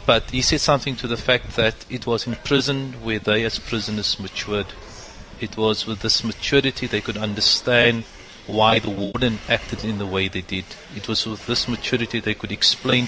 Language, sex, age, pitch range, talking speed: English, male, 30-49, 100-115 Hz, 195 wpm